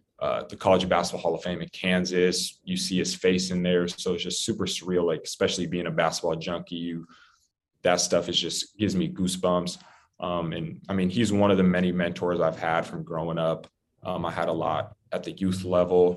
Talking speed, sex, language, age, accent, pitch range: 215 wpm, male, English, 20-39, American, 85-95 Hz